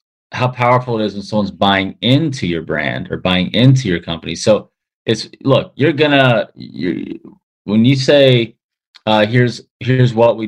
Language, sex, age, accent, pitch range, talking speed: English, male, 20-39, American, 100-130 Hz, 165 wpm